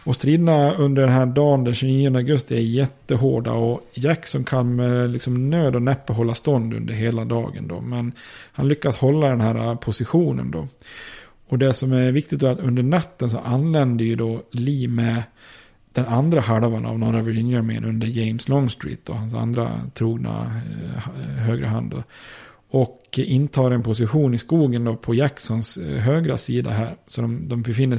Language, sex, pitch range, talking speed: Swedish, male, 115-135 Hz, 175 wpm